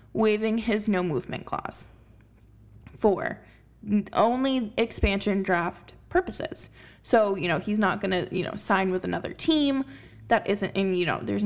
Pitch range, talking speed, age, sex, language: 180-235 Hz, 145 wpm, 20-39, female, English